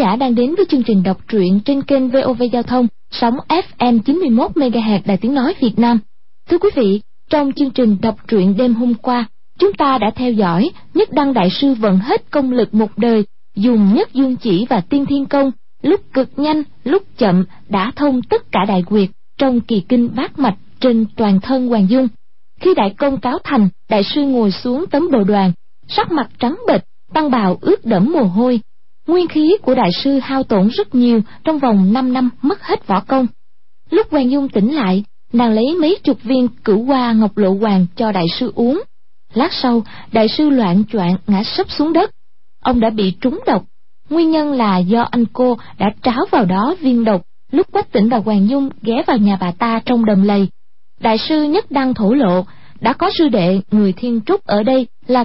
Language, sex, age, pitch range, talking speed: Vietnamese, female, 20-39, 210-280 Hz, 205 wpm